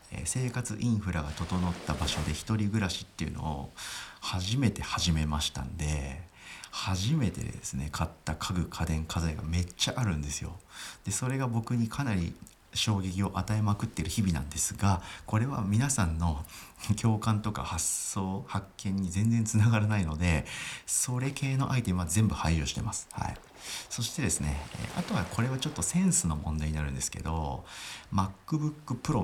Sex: male